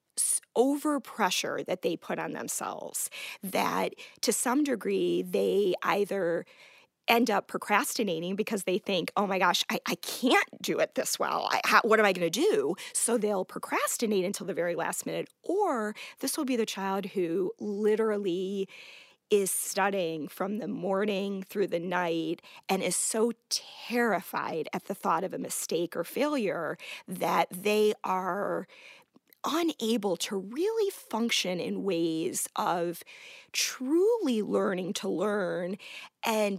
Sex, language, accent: female, English, American